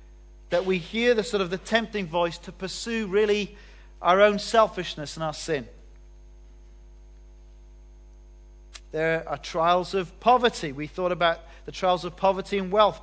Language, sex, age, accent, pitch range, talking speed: English, male, 40-59, British, 160-215 Hz, 145 wpm